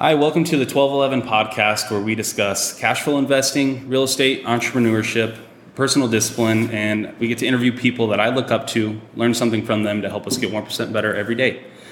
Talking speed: 200 wpm